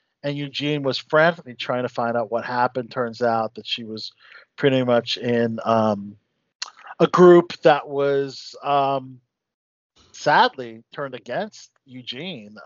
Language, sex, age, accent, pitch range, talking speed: English, male, 40-59, American, 120-165 Hz, 135 wpm